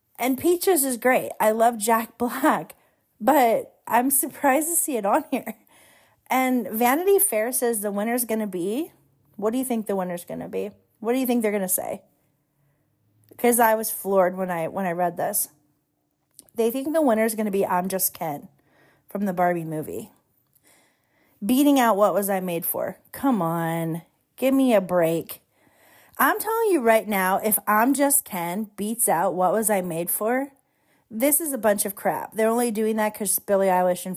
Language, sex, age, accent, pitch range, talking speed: English, female, 30-49, American, 185-245 Hz, 190 wpm